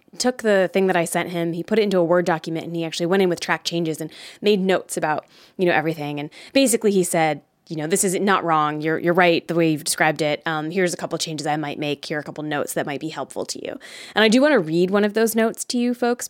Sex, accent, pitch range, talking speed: female, American, 160-230 Hz, 290 wpm